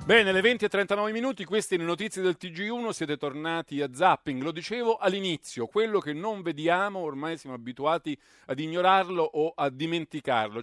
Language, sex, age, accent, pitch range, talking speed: Italian, male, 40-59, native, 135-185 Hz, 170 wpm